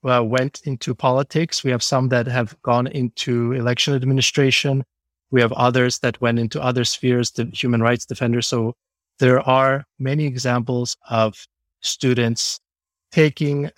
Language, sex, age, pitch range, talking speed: English, male, 30-49, 115-130 Hz, 145 wpm